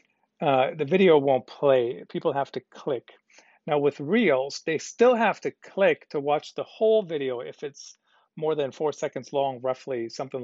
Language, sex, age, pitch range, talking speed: English, male, 40-59, 135-180 Hz, 180 wpm